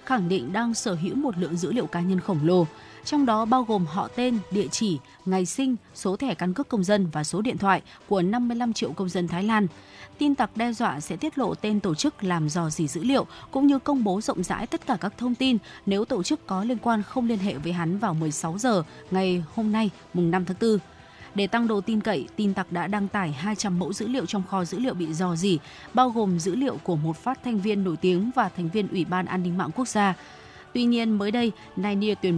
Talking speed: 250 wpm